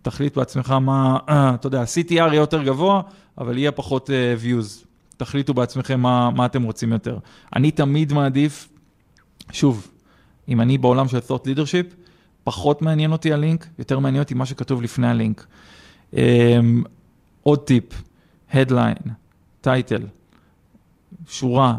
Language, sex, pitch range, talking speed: Hebrew, male, 120-140 Hz, 125 wpm